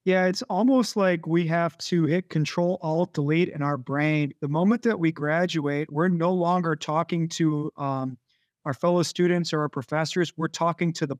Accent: American